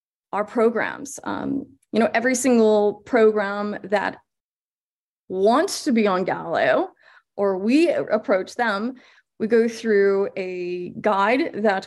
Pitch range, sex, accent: 205-265 Hz, female, American